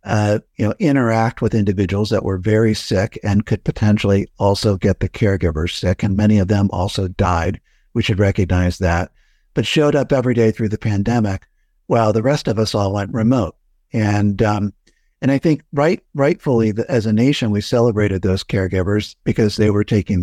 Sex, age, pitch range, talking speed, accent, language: male, 60-79, 105-120 Hz, 185 wpm, American, English